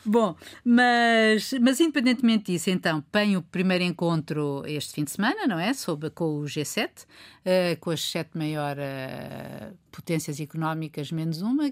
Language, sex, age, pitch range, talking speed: Portuguese, female, 50-69, 150-190 Hz, 140 wpm